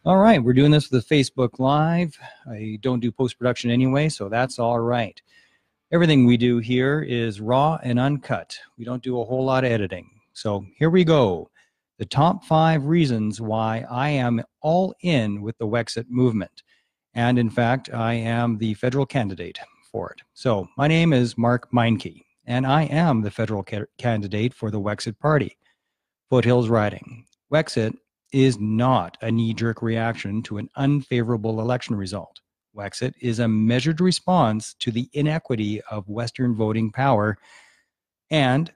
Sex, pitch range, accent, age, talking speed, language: male, 110-140 Hz, American, 40-59, 160 wpm, English